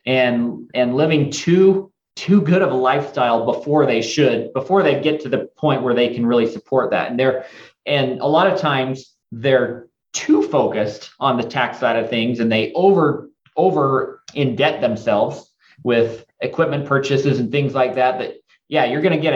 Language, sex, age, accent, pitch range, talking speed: English, male, 30-49, American, 125-155 Hz, 185 wpm